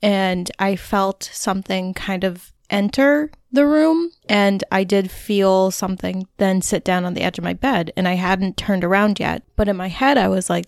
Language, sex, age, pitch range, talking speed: English, female, 20-39, 180-210 Hz, 200 wpm